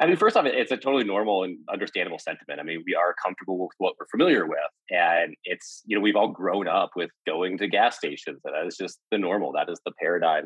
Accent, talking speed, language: American, 250 wpm, English